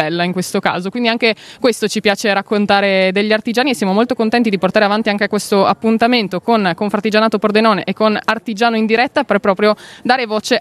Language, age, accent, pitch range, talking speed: Italian, 20-39, native, 195-230 Hz, 185 wpm